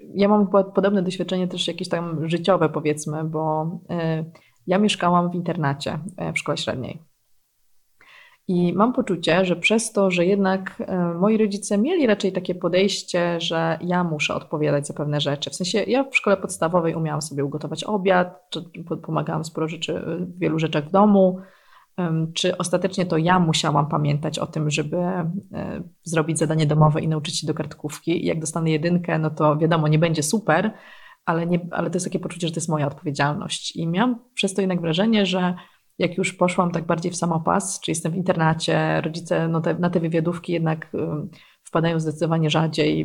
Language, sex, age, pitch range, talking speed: Polish, female, 20-39, 155-185 Hz, 170 wpm